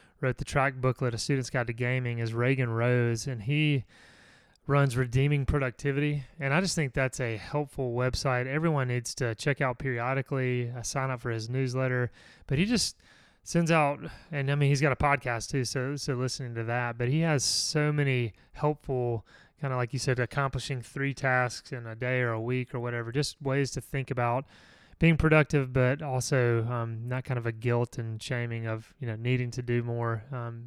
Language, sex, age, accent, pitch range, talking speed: English, male, 30-49, American, 120-145 Hz, 200 wpm